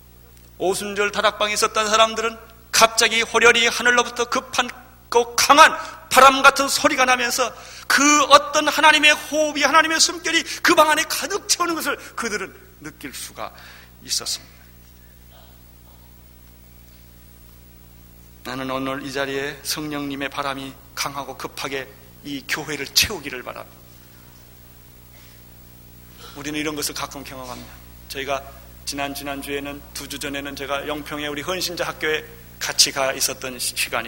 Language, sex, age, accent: Korean, male, 30-49, native